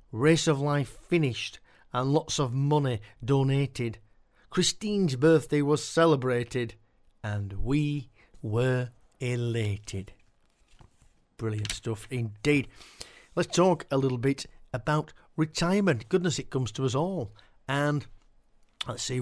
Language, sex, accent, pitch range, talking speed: English, male, British, 110-150 Hz, 110 wpm